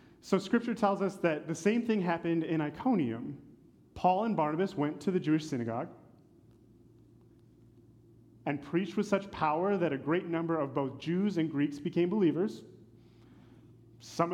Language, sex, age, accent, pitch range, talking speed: English, male, 30-49, American, 130-195 Hz, 150 wpm